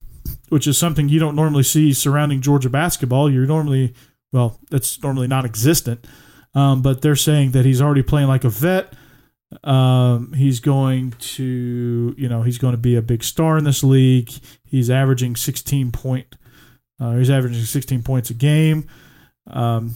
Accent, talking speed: American, 165 wpm